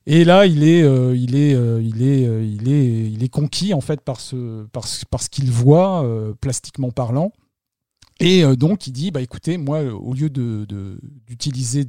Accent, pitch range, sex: French, 120-155 Hz, male